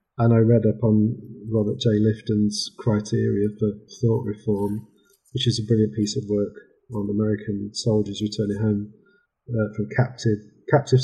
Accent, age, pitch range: British, 40-59, 105-125 Hz